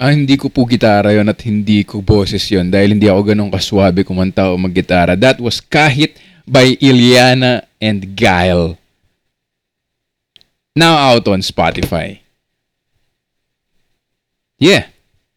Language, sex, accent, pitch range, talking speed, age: English, male, Filipino, 100-140 Hz, 115 wpm, 20-39